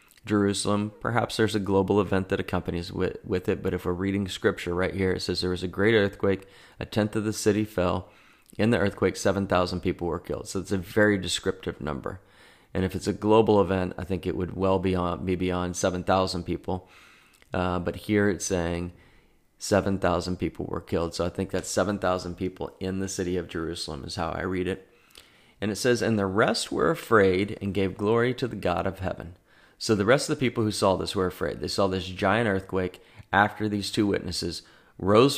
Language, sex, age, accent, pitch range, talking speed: English, male, 30-49, American, 90-110 Hz, 215 wpm